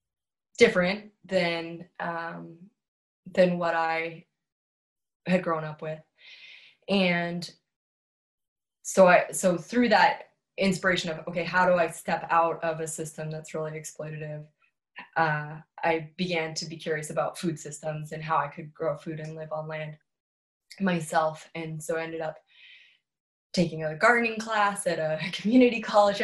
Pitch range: 155-180 Hz